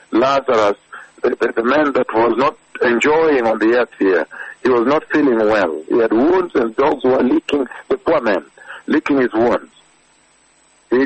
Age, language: 60-79, English